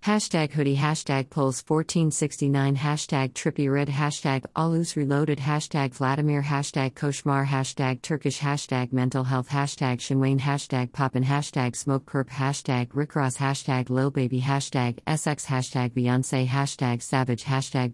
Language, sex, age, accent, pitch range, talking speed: English, female, 50-69, American, 125-140 Hz, 135 wpm